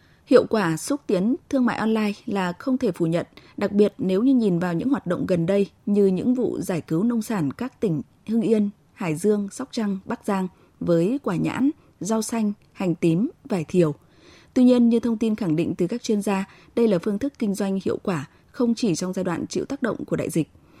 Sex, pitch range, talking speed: female, 170-230 Hz, 230 wpm